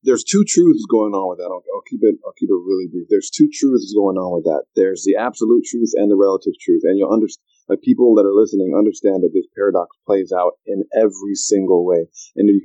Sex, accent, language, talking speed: male, American, English, 245 wpm